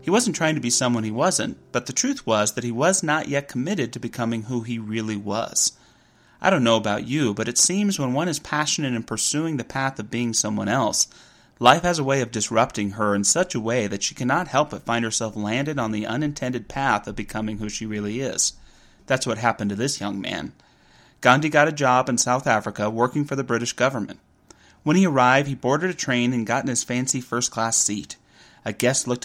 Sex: male